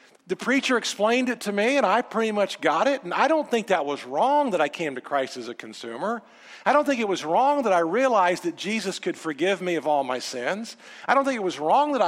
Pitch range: 170-245 Hz